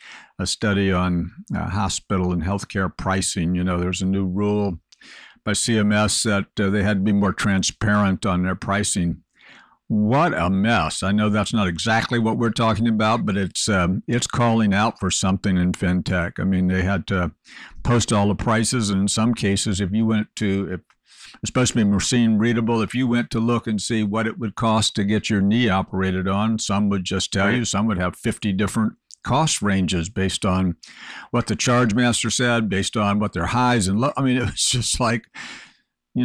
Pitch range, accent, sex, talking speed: 95-115 Hz, American, male, 200 wpm